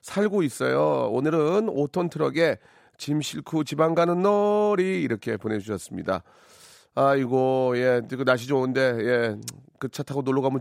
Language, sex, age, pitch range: Korean, male, 40-59, 110-150 Hz